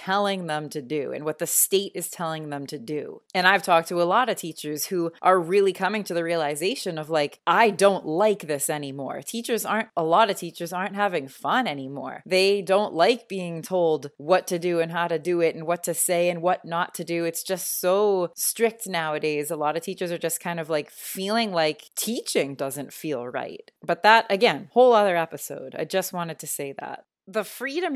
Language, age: English, 20-39